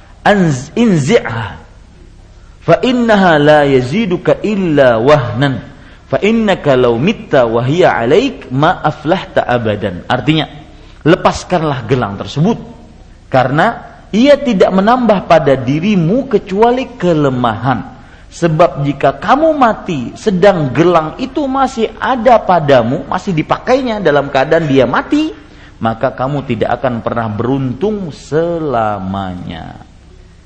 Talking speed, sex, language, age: 105 wpm, male, Malay, 40-59